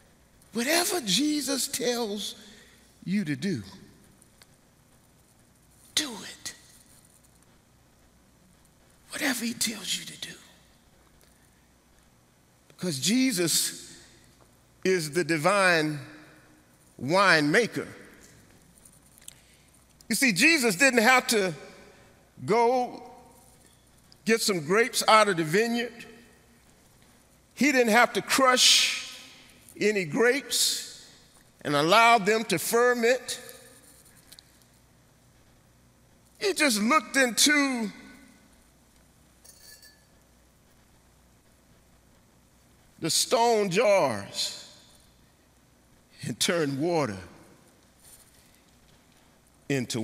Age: 50-69